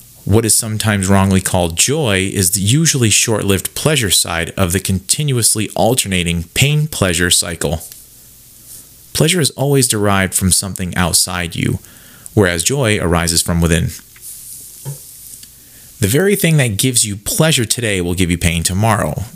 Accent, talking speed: American, 135 wpm